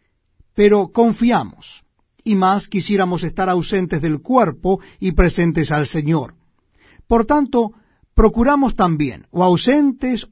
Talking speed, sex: 110 wpm, male